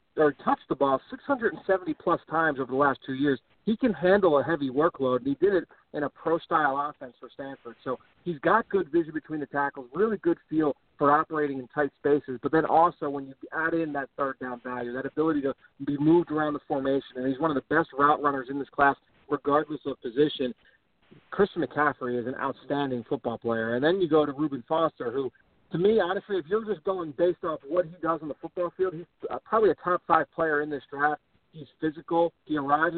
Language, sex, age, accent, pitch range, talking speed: English, male, 40-59, American, 140-170 Hz, 215 wpm